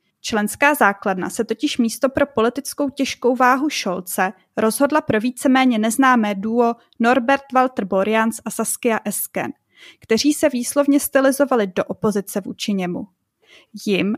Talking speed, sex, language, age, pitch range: 125 wpm, female, Czech, 20-39, 220-270 Hz